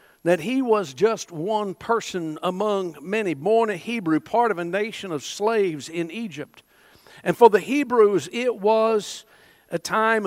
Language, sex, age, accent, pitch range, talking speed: English, male, 50-69, American, 170-225 Hz, 160 wpm